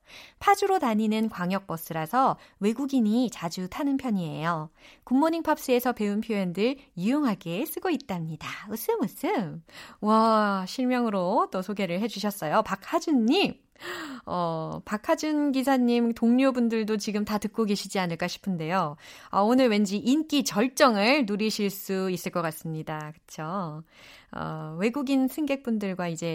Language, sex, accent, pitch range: Korean, female, native, 175-255 Hz